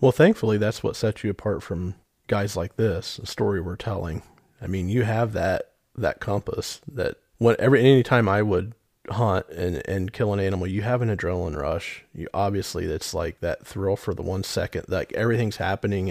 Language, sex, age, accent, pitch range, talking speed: English, male, 40-59, American, 95-110 Hz, 190 wpm